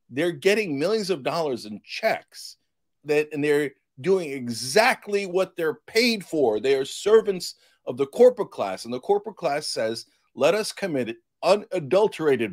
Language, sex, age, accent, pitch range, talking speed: English, male, 40-59, American, 150-225 Hz, 155 wpm